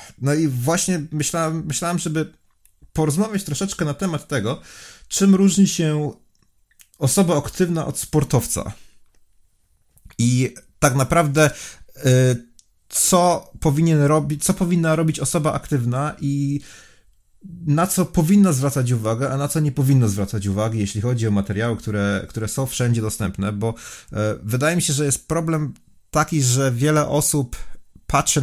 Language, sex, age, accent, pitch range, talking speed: Polish, male, 30-49, native, 100-150 Hz, 135 wpm